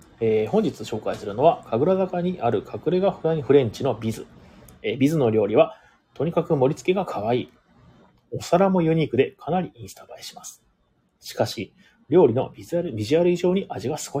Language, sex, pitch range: Japanese, male, 135-195 Hz